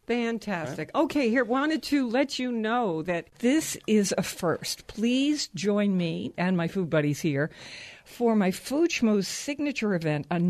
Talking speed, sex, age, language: 155 wpm, female, 60-79, English